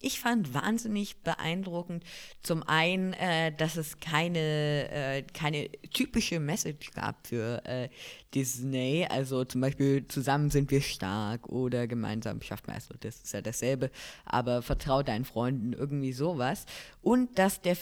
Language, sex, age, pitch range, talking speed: German, female, 20-39, 135-170 Hz, 145 wpm